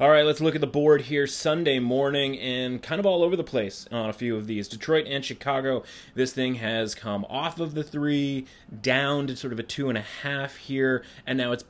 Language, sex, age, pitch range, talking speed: English, male, 30-49, 110-130 Hz, 235 wpm